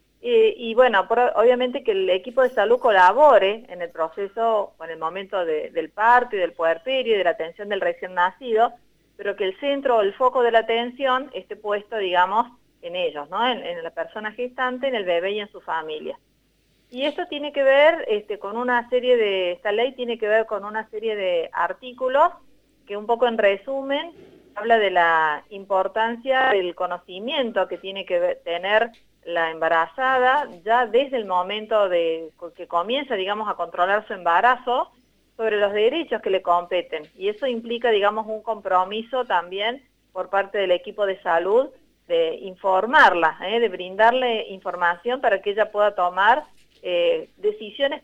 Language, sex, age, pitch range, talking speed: Spanish, female, 30-49, 190-255 Hz, 175 wpm